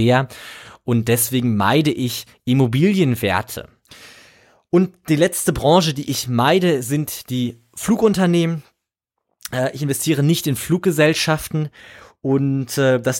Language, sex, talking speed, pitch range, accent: German, male, 100 wpm, 120-150 Hz, German